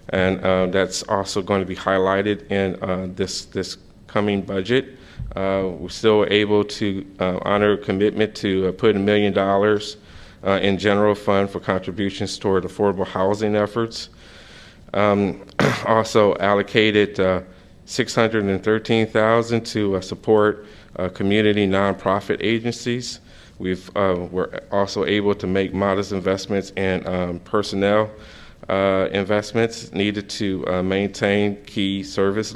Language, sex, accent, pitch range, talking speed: English, male, American, 95-105 Hz, 130 wpm